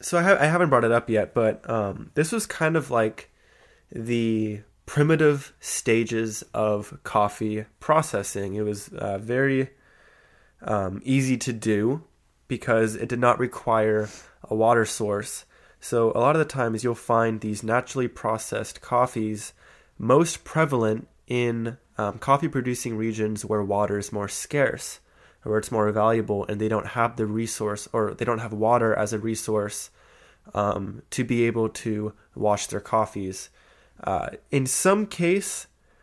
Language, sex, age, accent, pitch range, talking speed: English, male, 20-39, American, 105-130 Hz, 150 wpm